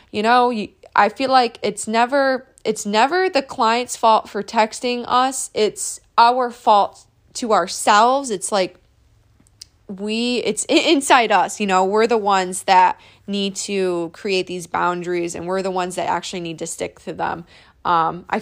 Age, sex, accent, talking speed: 20-39, female, American, 160 wpm